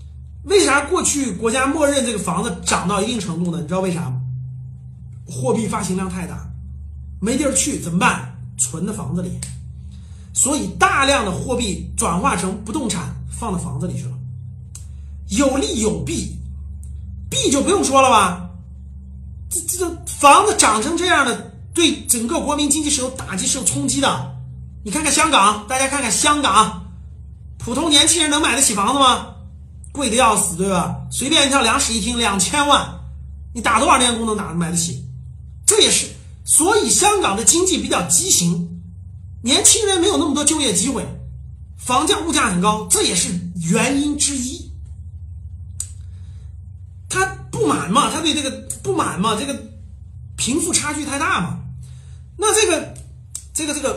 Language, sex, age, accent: Chinese, male, 30-49, native